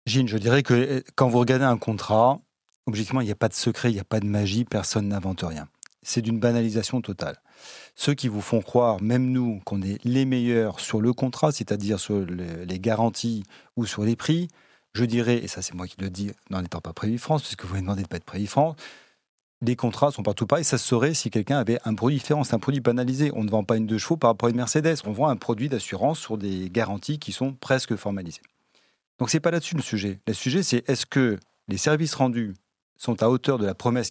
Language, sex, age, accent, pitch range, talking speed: French, male, 30-49, French, 105-135 Hz, 245 wpm